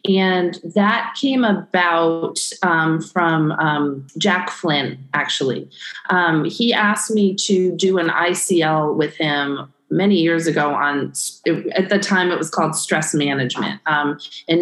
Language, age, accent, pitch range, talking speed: English, 30-49, American, 160-200 Hz, 140 wpm